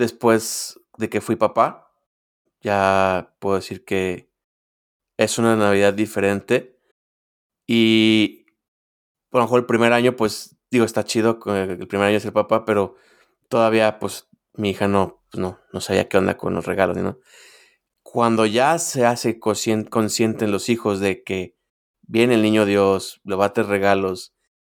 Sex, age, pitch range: male, 20-39, 100-115 Hz